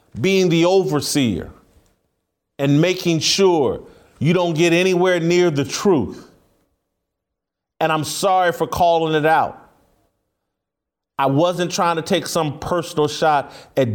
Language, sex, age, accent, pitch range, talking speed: English, male, 40-59, American, 115-175 Hz, 125 wpm